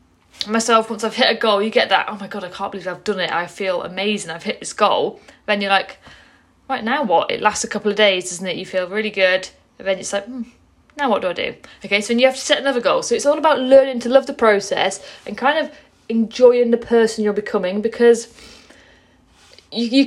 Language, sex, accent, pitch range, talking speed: English, female, British, 200-245 Hz, 240 wpm